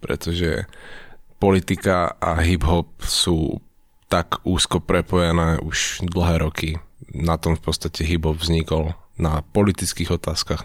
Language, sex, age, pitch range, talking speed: Slovak, male, 20-39, 80-95 Hz, 115 wpm